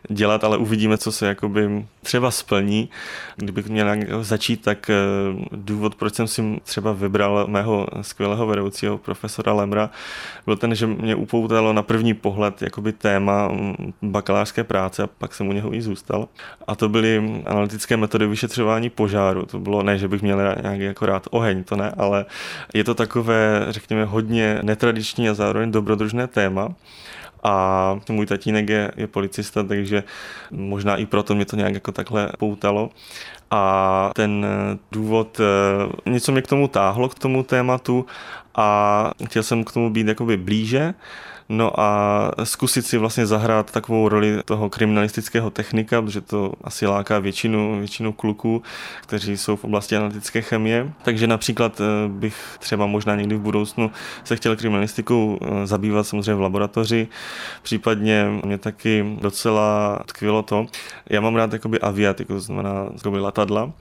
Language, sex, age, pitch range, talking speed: Czech, male, 20-39, 100-110 Hz, 145 wpm